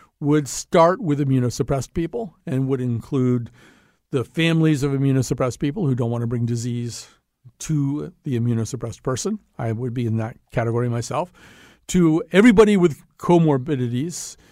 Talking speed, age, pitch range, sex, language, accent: 140 wpm, 50-69, 125-160 Hz, male, English, American